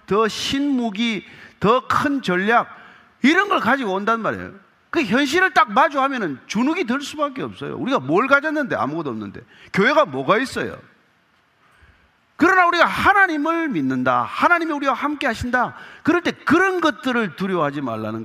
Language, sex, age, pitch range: Korean, male, 40-59, 170-280 Hz